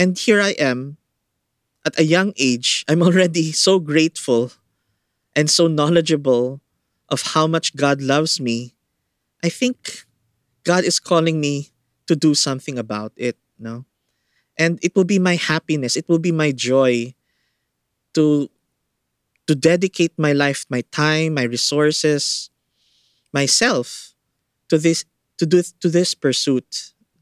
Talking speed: 140 wpm